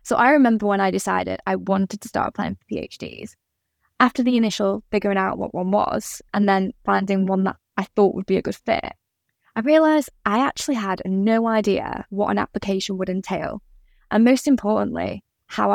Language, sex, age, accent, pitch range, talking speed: English, female, 10-29, British, 195-255 Hz, 185 wpm